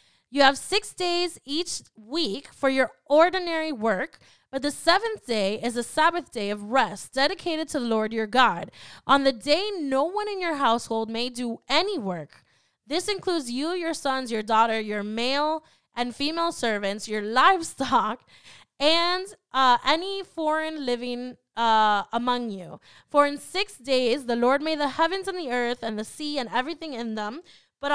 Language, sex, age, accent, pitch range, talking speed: English, female, 10-29, American, 220-310 Hz, 170 wpm